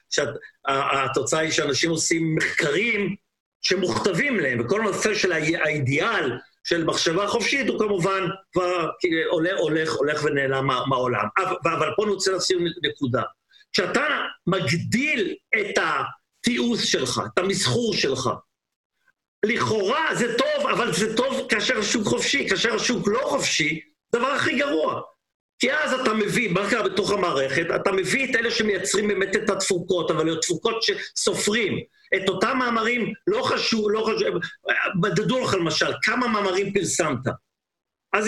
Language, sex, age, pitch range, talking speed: Hebrew, male, 50-69, 170-235 Hz, 135 wpm